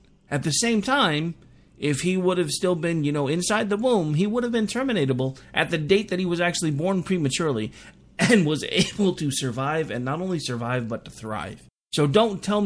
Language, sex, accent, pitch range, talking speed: English, male, American, 130-175 Hz, 210 wpm